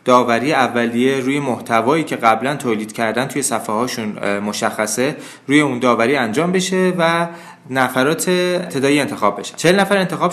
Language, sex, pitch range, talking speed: Persian, male, 115-155 Hz, 145 wpm